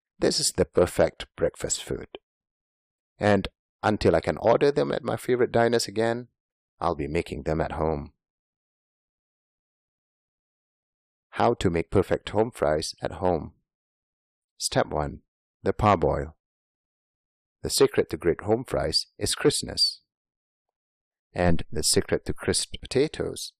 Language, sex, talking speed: English, male, 125 wpm